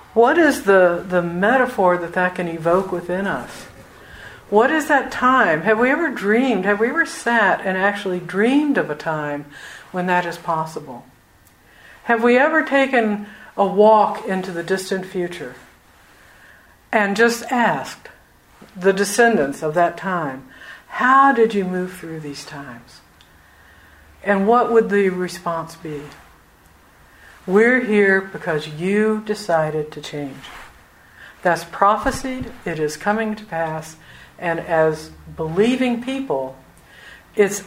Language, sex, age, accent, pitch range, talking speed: English, female, 60-79, American, 155-220 Hz, 130 wpm